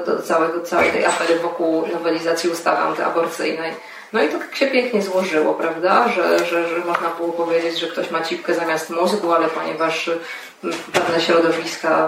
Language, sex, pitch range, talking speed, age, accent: Polish, female, 165-180 Hz, 170 wpm, 20-39, native